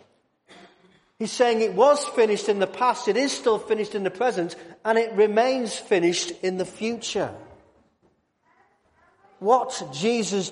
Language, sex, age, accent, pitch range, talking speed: English, male, 40-59, British, 175-220 Hz, 135 wpm